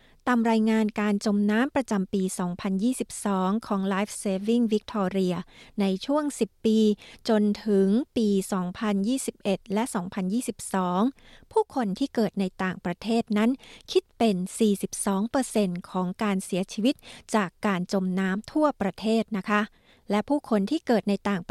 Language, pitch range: Thai, 200-235 Hz